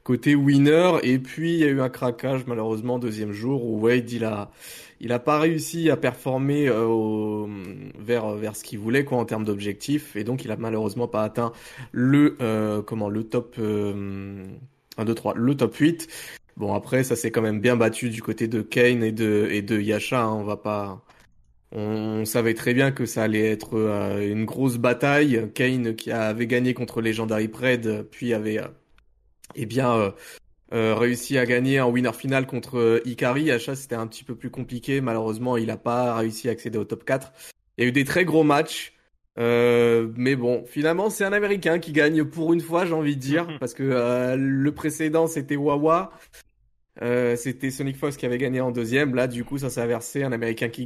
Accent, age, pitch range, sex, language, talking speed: French, 20-39, 110-135 Hz, male, French, 205 wpm